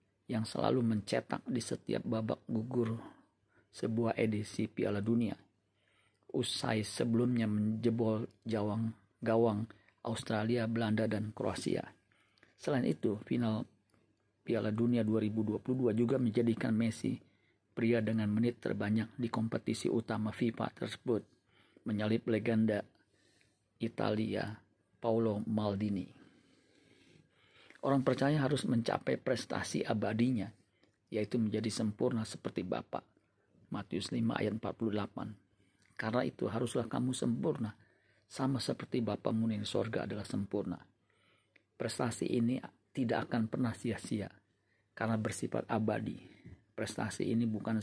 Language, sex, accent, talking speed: Indonesian, male, native, 100 wpm